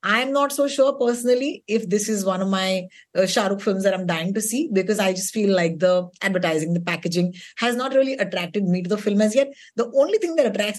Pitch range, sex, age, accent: 185-255 Hz, female, 20-39, native